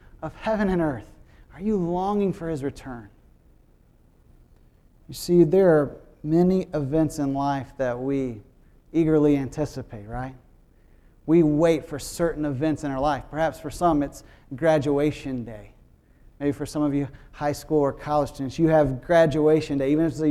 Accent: American